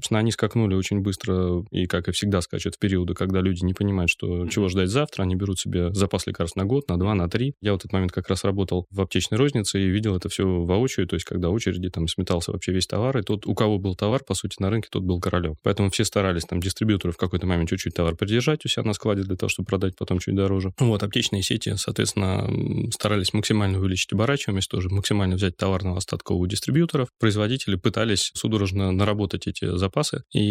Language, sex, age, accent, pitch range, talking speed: Russian, male, 20-39, native, 90-110 Hz, 225 wpm